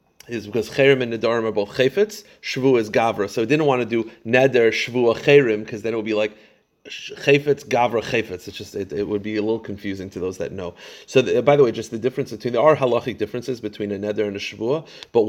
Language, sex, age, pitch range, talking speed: English, male, 30-49, 110-145 Hz, 230 wpm